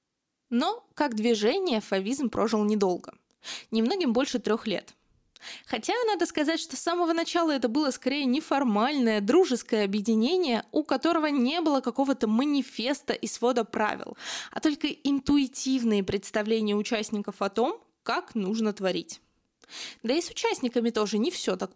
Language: Russian